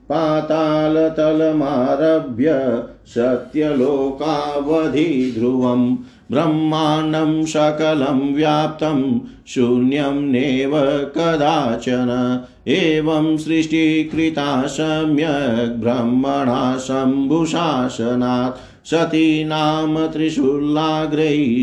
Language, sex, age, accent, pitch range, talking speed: Hindi, male, 50-69, native, 125-155 Hz, 40 wpm